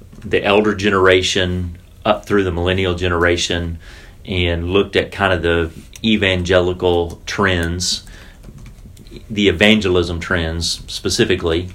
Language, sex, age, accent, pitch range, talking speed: English, male, 40-59, American, 90-105 Hz, 100 wpm